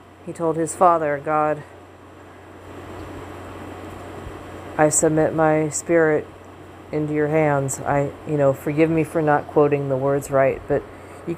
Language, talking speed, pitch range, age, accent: English, 130 wpm, 100-170 Hz, 40-59, American